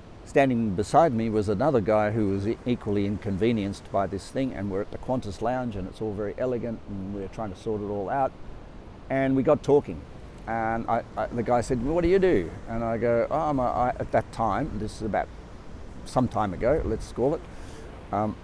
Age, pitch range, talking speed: 50-69, 100-120 Hz, 220 wpm